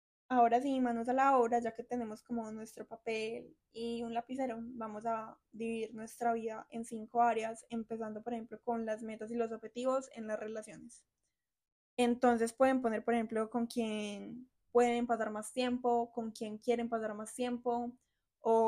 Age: 10-29